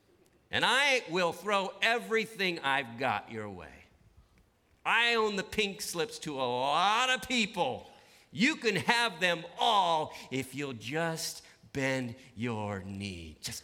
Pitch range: 100-150 Hz